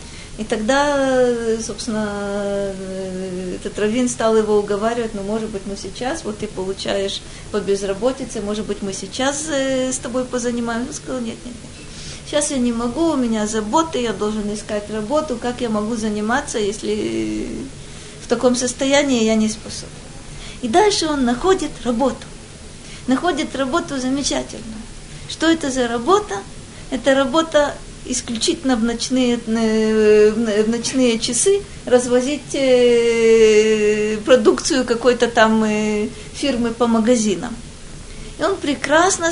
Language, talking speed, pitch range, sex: Russian, 125 wpm, 215-280 Hz, female